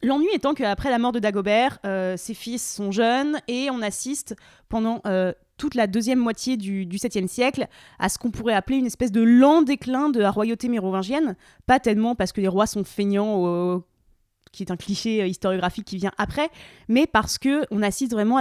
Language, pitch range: French, 200-260 Hz